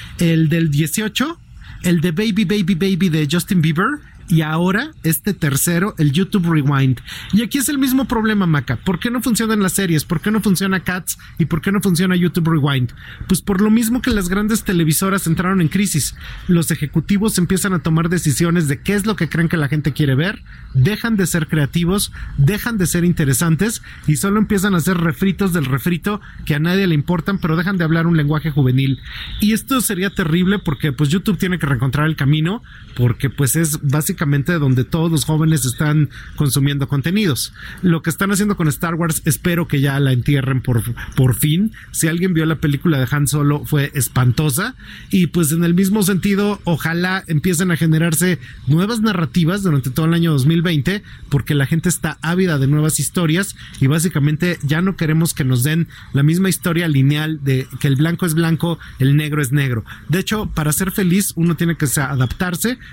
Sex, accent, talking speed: male, Mexican, 195 wpm